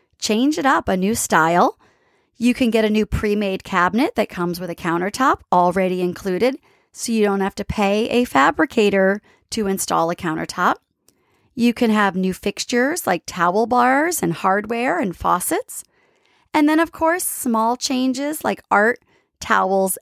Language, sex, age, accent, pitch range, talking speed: English, female, 30-49, American, 195-275 Hz, 160 wpm